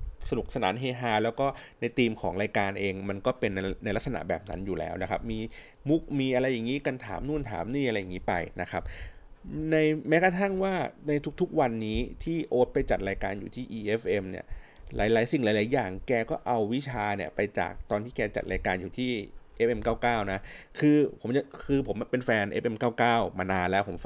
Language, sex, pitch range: Thai, male, 95-125 Hz